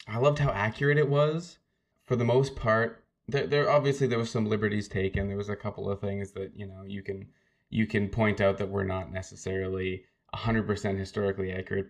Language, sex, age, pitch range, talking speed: English, male, 20-39, 100-115 Hz, 205 wpm